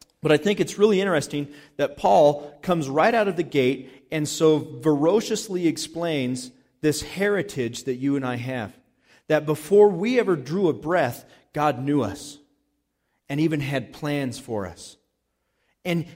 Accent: American